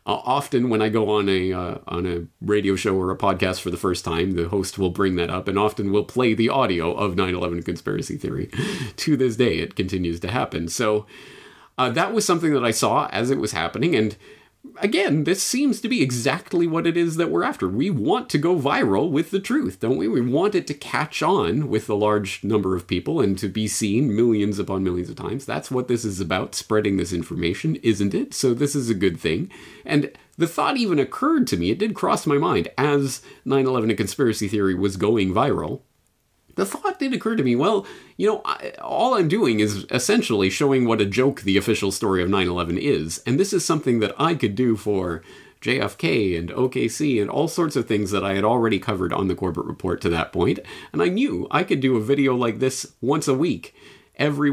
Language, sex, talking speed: English, male, 220 wpm